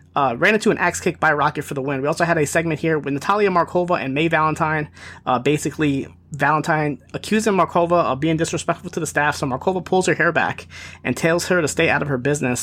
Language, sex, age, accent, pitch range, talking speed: English, male, 30-49, American, 140-170 Hz, 235 wpm